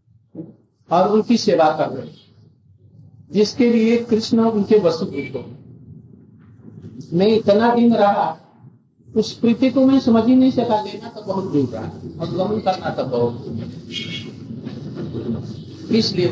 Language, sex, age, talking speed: Hindi, male, 50-69, 110 wpm